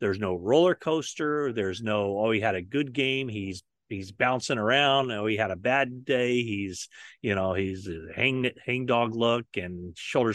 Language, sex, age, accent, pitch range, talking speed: English, male, 40-59, American, 110-150 Hz, 185 wpm